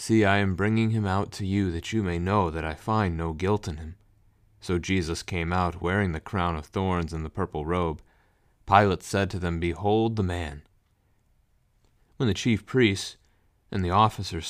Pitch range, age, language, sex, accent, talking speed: 90-110 Hz, 30-49, English, male, American, 190 wpm